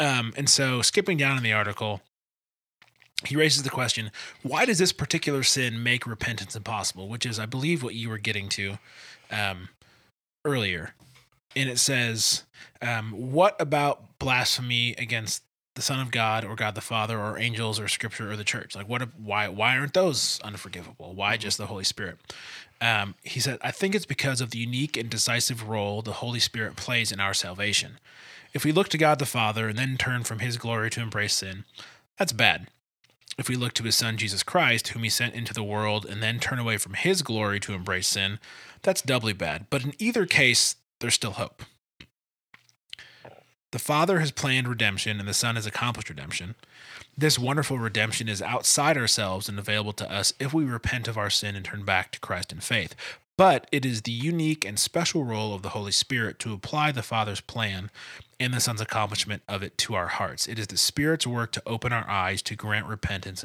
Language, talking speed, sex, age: English, 200 wpm, male, 20-39